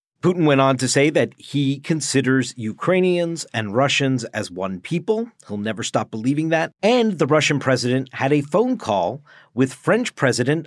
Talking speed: 170 wpm